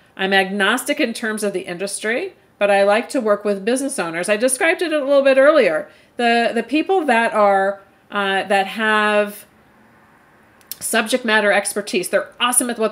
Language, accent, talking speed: English, American, 170 wpm